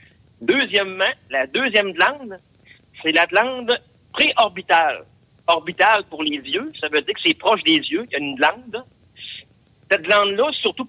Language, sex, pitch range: French, male, 145-235 Hz